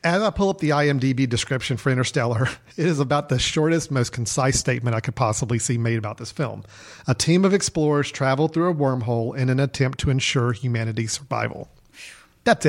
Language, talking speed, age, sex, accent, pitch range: English, 195 wpm, 40-59, male, American, 120-150 Hz